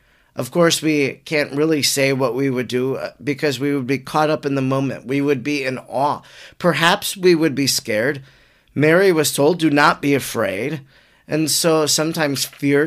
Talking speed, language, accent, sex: 185 wpm, English, American, male